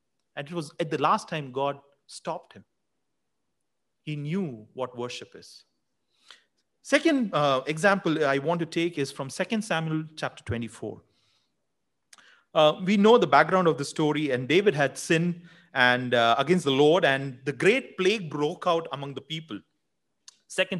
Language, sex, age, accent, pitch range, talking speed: English, male, 30-49, Indian, 145-220 Hz, 160 wpm